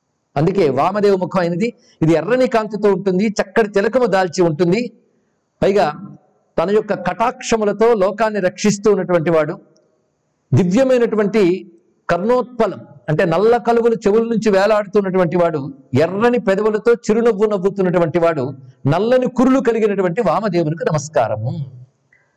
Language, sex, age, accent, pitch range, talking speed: Telugu, male, 50-69, native, 175-225 Hz, 105 wpm